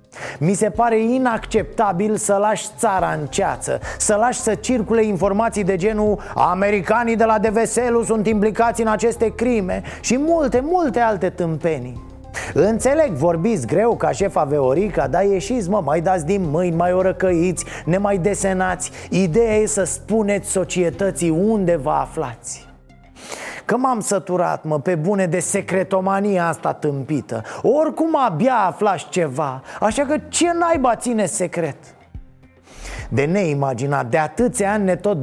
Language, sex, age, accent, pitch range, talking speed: Romanian, male, 20-39, native, 170-235 Hz, 145 wpm